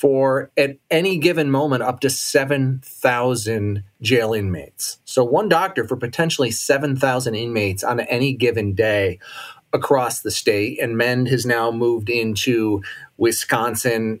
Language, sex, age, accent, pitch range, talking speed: English, male, 30-49, American, 110-140 Hz, 130 wpm